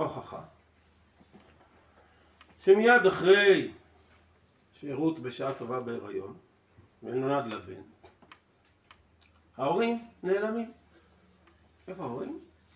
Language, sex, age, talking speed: Hebrew, male, 50-69, 65 wpm